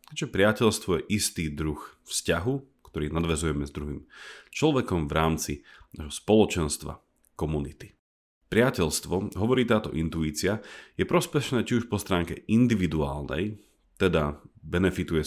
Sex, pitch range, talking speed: male, 75-105 Hz, 115 wpm